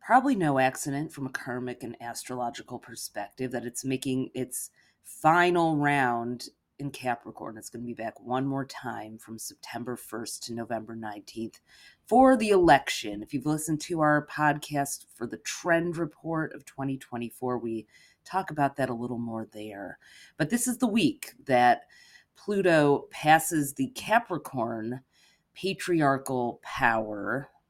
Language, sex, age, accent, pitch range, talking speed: English, female, 30-49, American, 125-165 Hz, 145 wpm